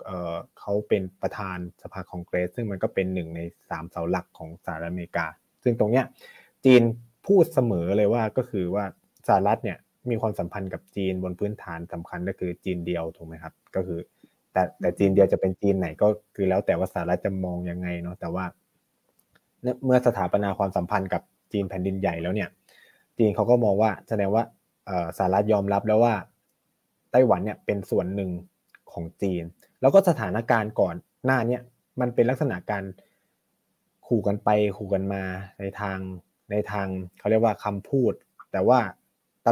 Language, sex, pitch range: Thai, male, 95-120 Hz